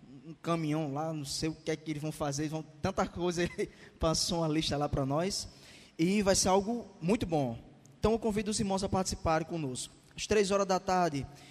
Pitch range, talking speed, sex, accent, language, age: 145-200 Hz, 220 wpm, male, Brazilian, Portuguese, 20-39